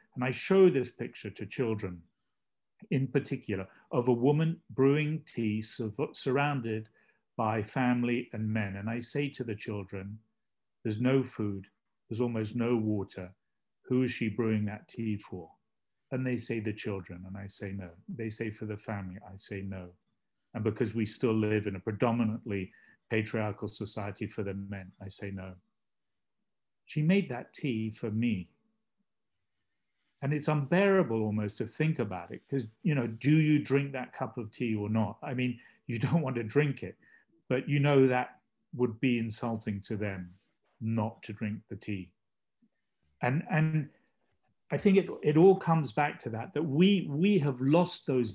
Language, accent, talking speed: English, British, 170 wpm